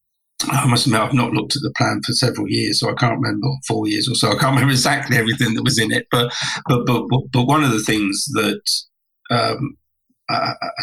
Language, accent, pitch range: English, British, 110-130 Hz